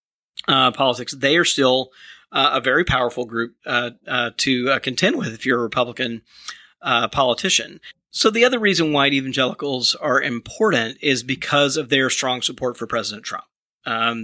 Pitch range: 120-145 Hz